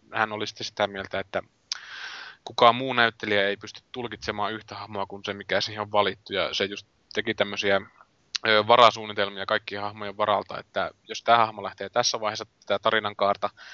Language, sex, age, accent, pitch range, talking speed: Finnish, male, 20-39, native, 100-115 Hz, 165 wpm